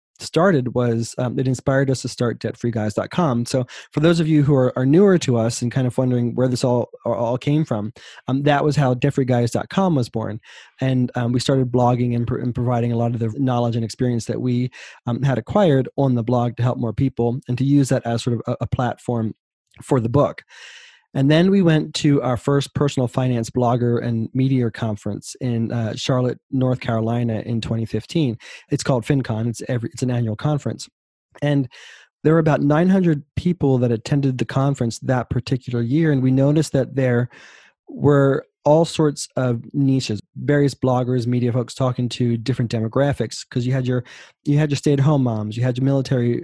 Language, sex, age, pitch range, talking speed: English, male, 20-39, 120-140 Hz, 195 wpm